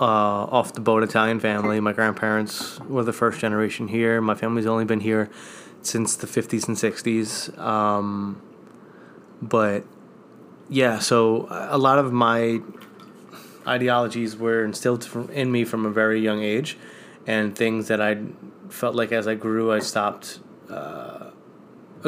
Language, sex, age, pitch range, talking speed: English, male, 20-39, 110-125 Hz, 140 wpm